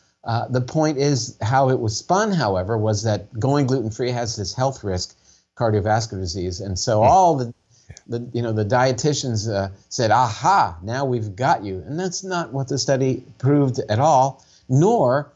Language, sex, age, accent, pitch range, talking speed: English, male, 50-69, American, 105-135 Hz, 175 wpm